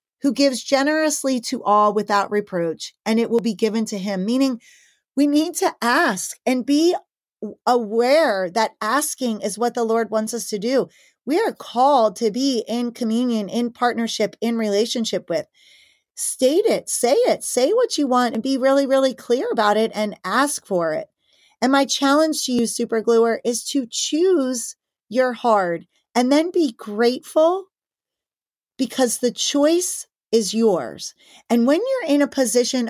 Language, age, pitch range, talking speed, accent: English, 30-49, 220-285 Hz, 160 wpm, American